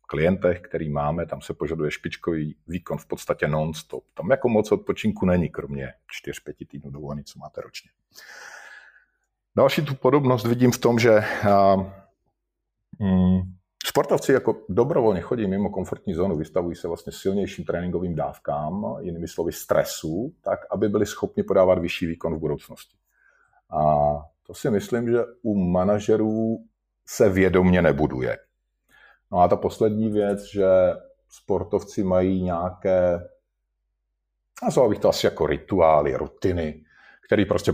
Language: Slovak